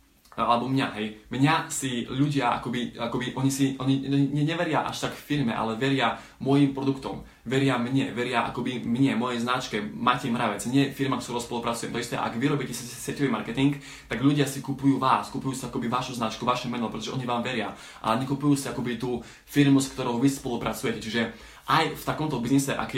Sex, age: male, 20-39